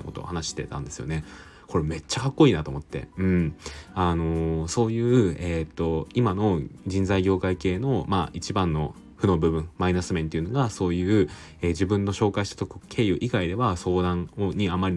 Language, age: Japanese, 20-39